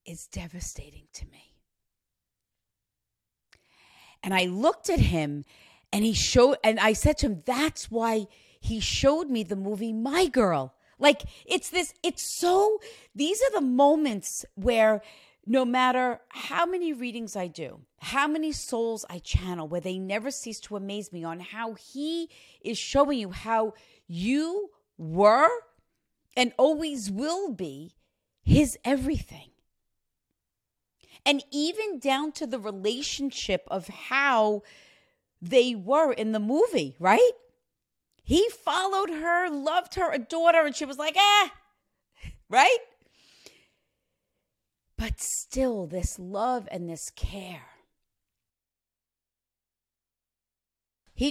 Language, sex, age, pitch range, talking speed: English, female, 40-59, 175-295 Hz, 125 wpm